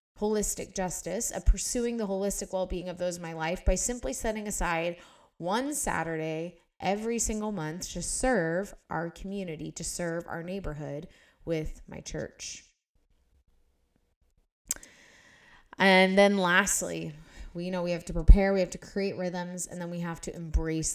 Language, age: English, 20-39